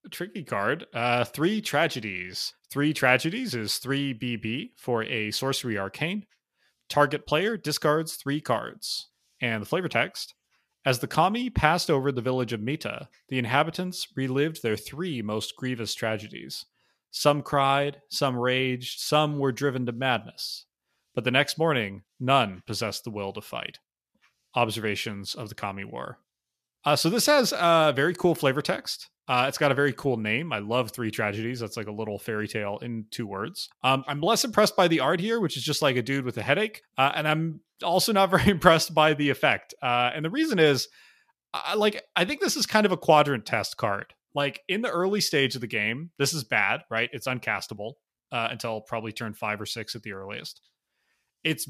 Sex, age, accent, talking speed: male, 30-49, American, 190 wpm